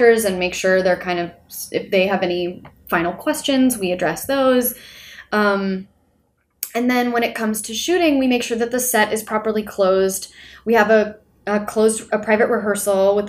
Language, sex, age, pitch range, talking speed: English, female, 10-29, 185-215 Hz, 185 wpm